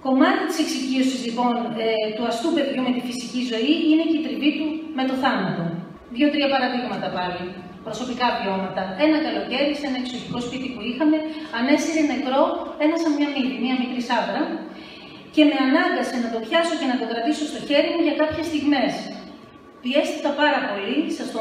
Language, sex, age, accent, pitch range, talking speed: Greek, female, 40-59, native, 230-295 Hz, 175 wpm